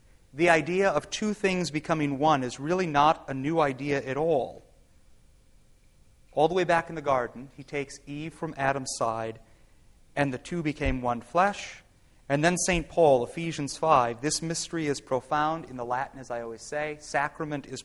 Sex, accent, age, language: male, American, 30-49, English